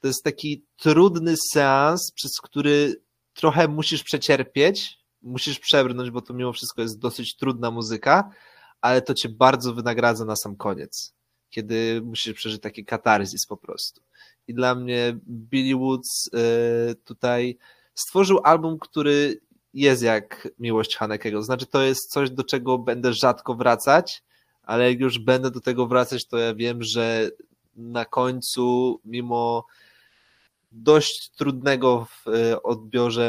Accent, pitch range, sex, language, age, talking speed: native, 115-130 Hz, male, Polish, 20-39, 135 wpm